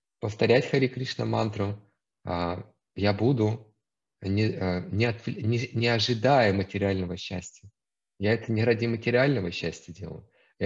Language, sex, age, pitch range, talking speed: Russian, male, 30-49, 95-120 Hz, 115 wpm